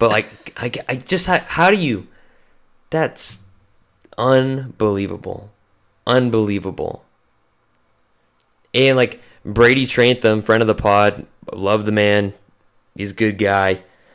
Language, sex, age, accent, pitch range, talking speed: English, male, 20-39, American, 100-125 Hz, 110 wpm